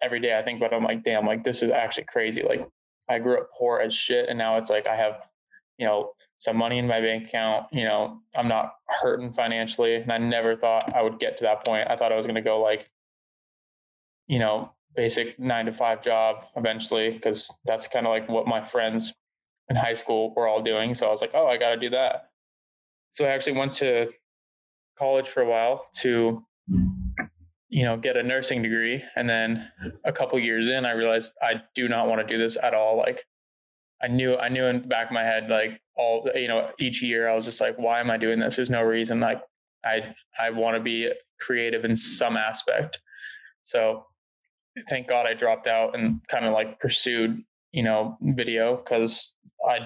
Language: English